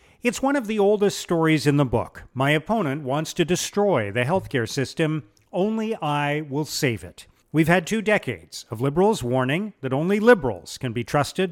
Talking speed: 180 wpm